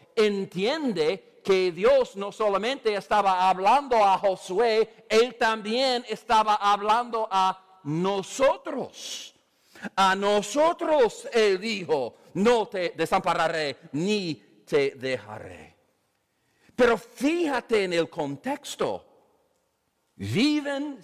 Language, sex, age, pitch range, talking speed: English, male, 50-69, 185-270 Hz, 90 wpm